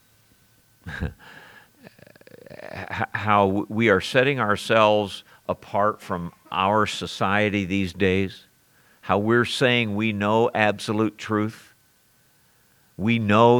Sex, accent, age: male, American, 50-69